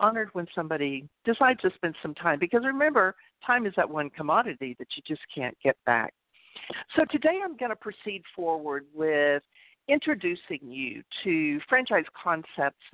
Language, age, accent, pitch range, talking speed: English, 50-69, American, 150-235 Hz, 160 wpm